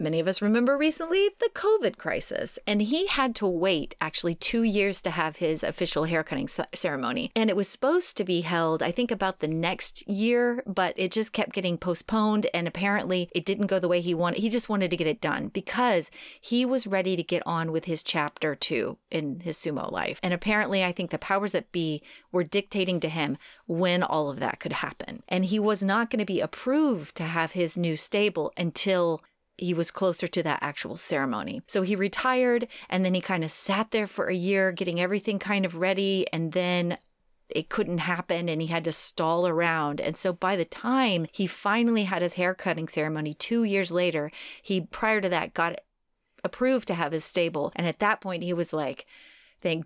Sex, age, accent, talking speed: female, 30-49, American, 205 wpm